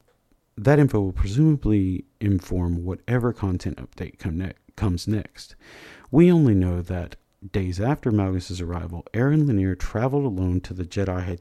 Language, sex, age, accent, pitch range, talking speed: English, male, 40-59, American, 90-120 Hz, 145 wpm